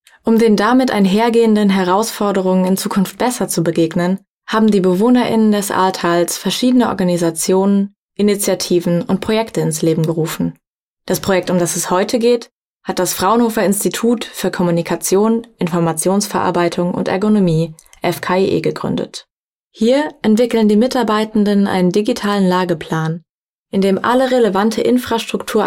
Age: 20-39